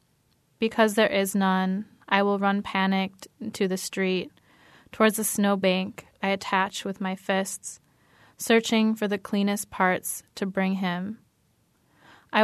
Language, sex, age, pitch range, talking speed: English, female, 10-29, 190-210 Hz, 135 wpm